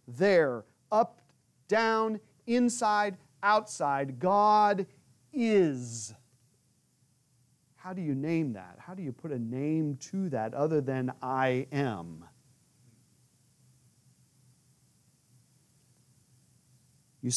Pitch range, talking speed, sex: 130-220 Hz, 85 wpm, male